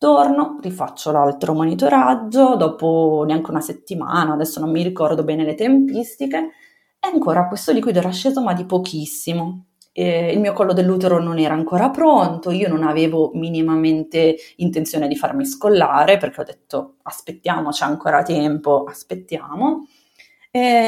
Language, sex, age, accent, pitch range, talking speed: Italian, female, 30-49, native, 160-225 Hz, 145 wpm